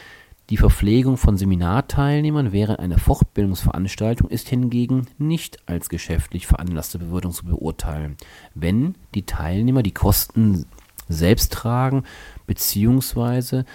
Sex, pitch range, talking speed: male, 90-120 Hz, 105 wpm